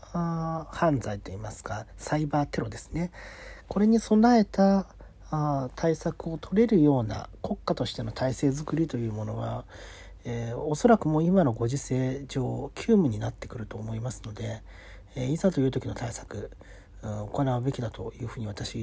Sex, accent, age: male, native, 40-59